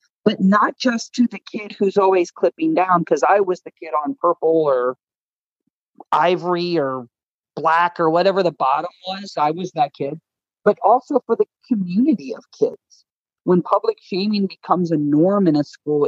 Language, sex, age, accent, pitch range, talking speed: English, male, 40-59, American, 150-195 Hz, 170 wpm